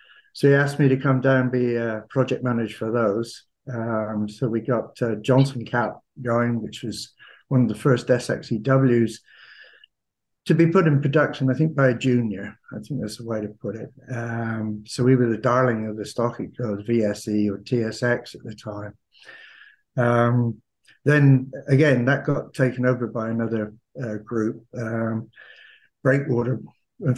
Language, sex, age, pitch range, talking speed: English, male, 60-79, 110-135 Hz, 170 wpm